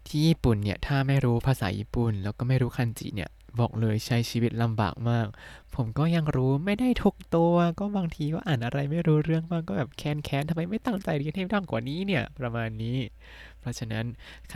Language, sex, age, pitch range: Thai, male, 20-39, 105-140 Hz